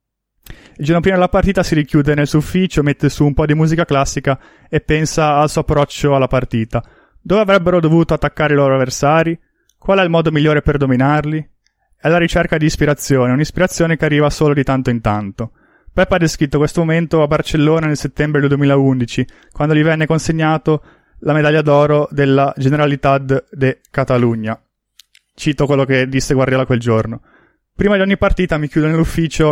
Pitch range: 135-160 Hz